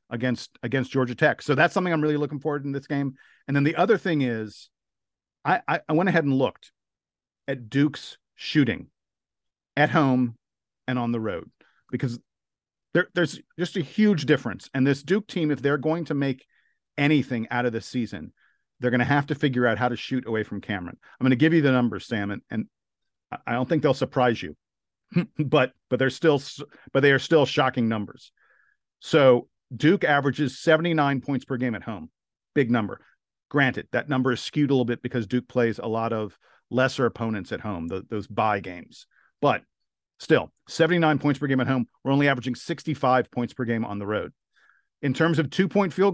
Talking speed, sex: 200 wpm, male